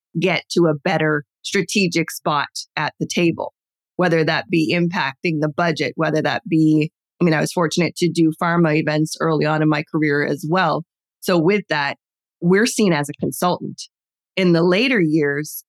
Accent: American